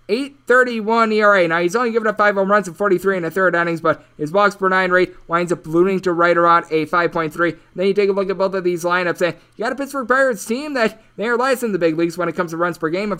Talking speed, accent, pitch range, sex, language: 285 wpm, American, 165-205 Hz, male, English